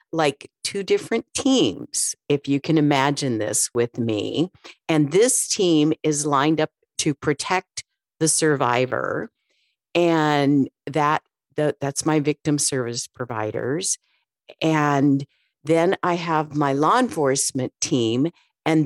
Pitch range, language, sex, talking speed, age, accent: 140-185 Hz, English, female, 120 wpm, 50-69, American